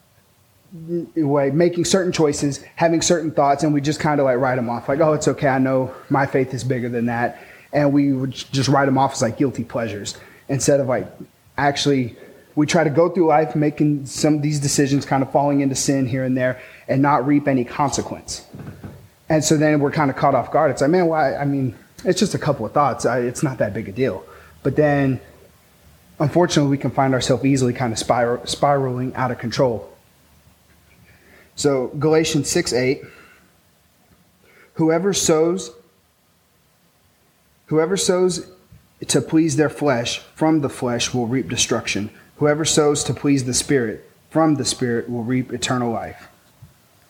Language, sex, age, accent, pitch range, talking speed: English, male, 30-49, American, 125-150 Hz, 175 wpm